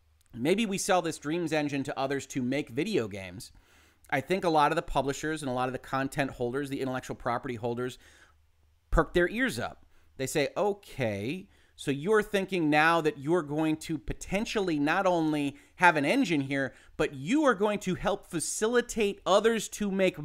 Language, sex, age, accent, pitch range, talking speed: English, male, 30-49, American, 130-190 Hz, 185 wpm